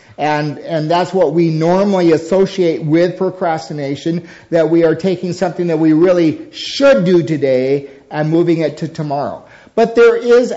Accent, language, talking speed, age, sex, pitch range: American, English, 160 wpm, 50-69, male, 145-190 Hz